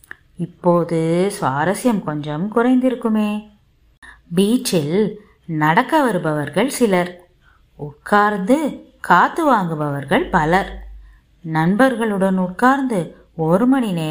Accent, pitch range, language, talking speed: native, 160-245 Hz, Tamil, 70 wpm